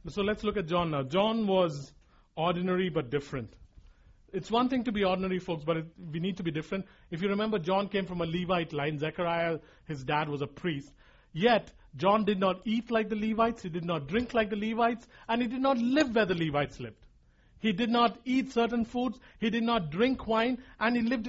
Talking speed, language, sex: 215 wpm, English, male